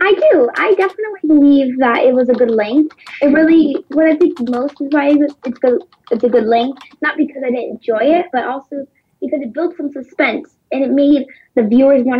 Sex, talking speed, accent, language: female, 210 wpm, American, English